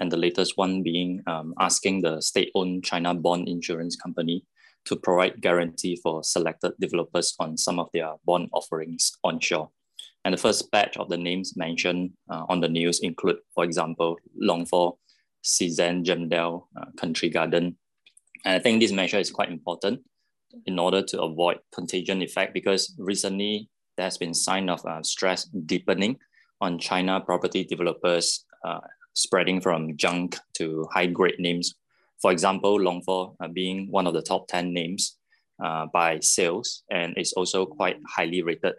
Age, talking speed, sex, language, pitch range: 20-39, 160 wpm, male, English, 85-95 Hz